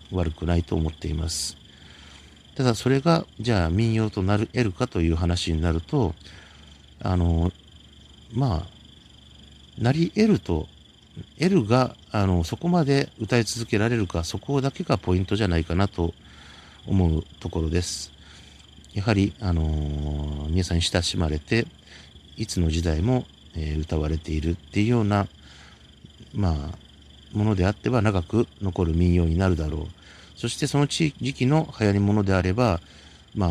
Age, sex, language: 50-69, male, Japanese